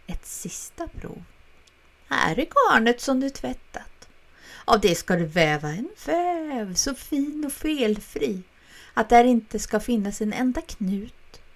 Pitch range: 170-245 Hz